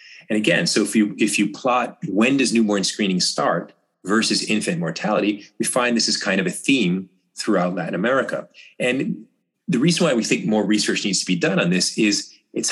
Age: 30-49